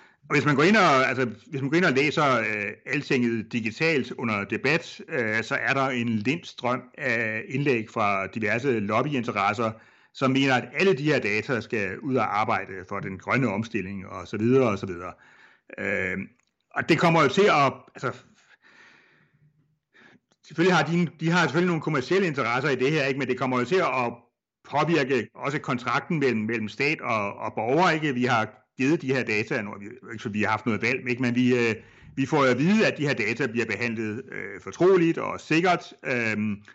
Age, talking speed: 60-79, 200 wpm